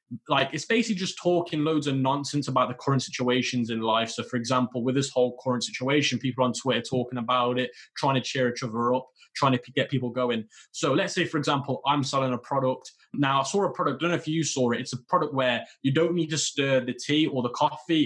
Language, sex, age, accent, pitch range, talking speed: English, male, 20-39, British, 125-150 Hz, 245 wpm